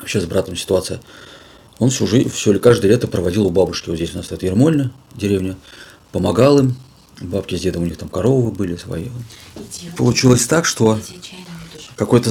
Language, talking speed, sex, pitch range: Russian, 165 wpm, male, 90-120 Hz